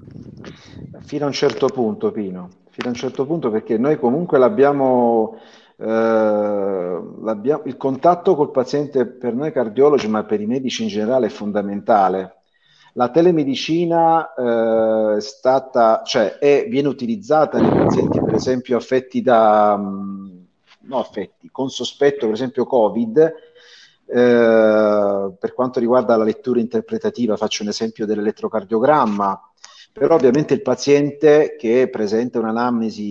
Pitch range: 110-140 Hz